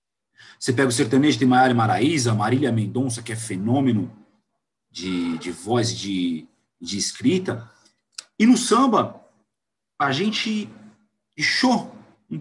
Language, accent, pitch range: Portuguese, Brazilian, 110-140 Hz